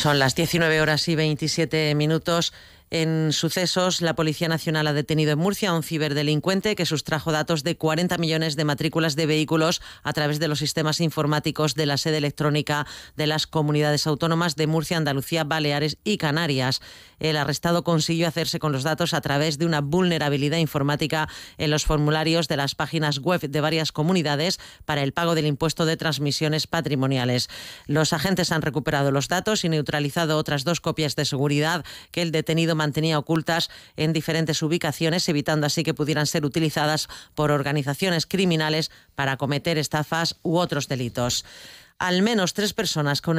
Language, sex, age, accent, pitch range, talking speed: Spanish, female, 30-49, Spanish, 150-170 Hz, 165 wpm